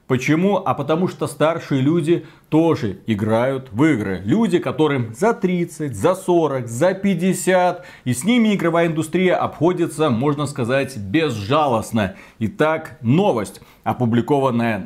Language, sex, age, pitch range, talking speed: Russian, male, 40-59, 120-180 Hz, 120 wpm